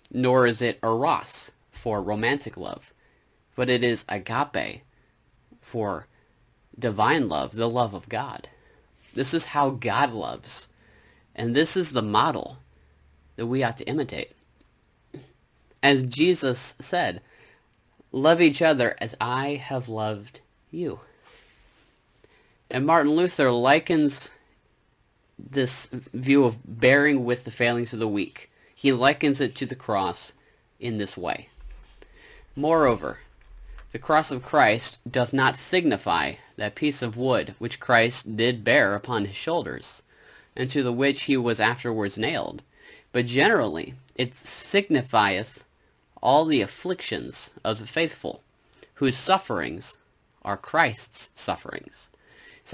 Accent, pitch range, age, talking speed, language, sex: American, 110-140 Hz, 30-49, 125 wpm, English, male